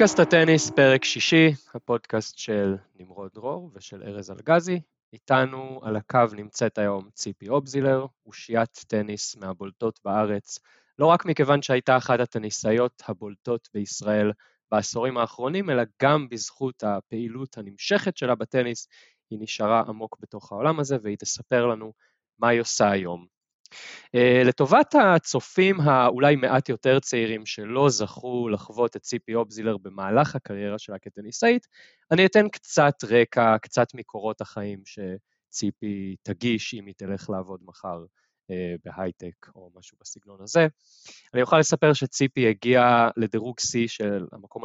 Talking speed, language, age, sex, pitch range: 130 wpm, Hebrew, 20-39, male, 105-130 Hz